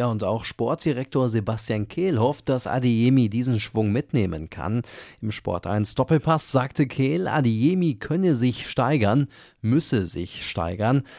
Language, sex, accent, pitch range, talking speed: German, male, German, 110-140 Hz, 125 wpm